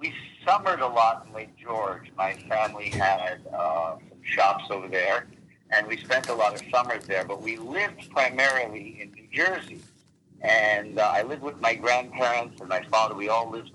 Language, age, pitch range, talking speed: English, 50-69, 105-150 Hz, 190 wpm